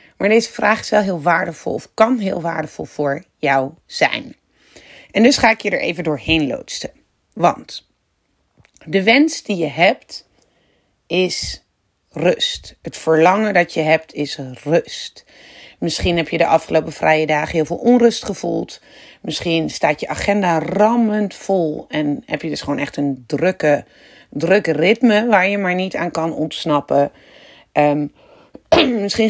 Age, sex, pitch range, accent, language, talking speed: 40-59, female, 155-210 Hz, Dutch, Dutch, 150 wpm